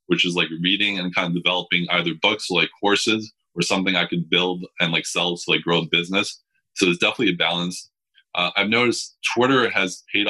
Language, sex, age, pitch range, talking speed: English, male, 20-39, 90-105 Hz, 215 wpm